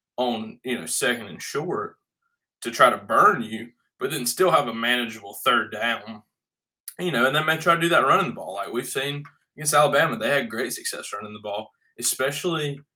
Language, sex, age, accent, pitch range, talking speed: English, male, 20-39, American, 110-125 Hz, 200 wpm